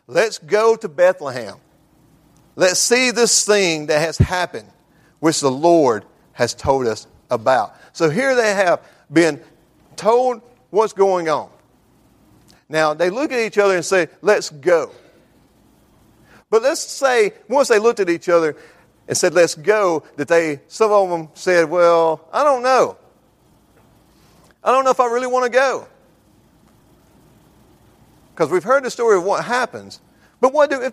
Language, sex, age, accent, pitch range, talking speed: English, male, 50-69, American, 165-245 Hz, 155 wpm